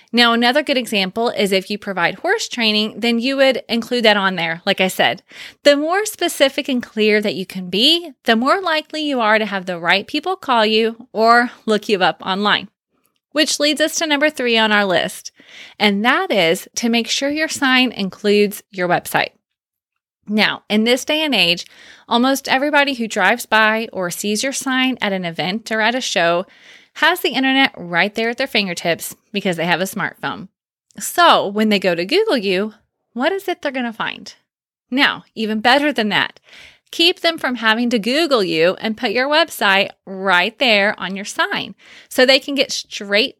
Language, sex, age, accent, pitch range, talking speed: English, female, 20-39, American, 195-265 Hz, 195 wpm